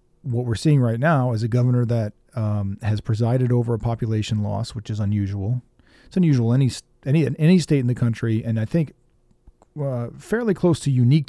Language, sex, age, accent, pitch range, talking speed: English, male, 40-59, American, 110-125 Hz, 190 wpm